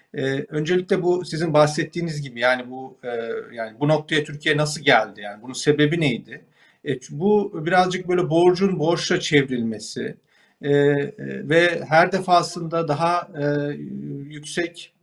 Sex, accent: male, native